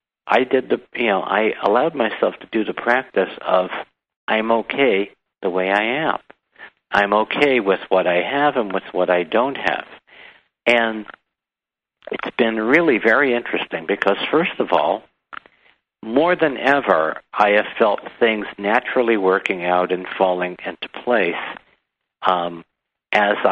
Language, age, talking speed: English, 60-79, 145 wpm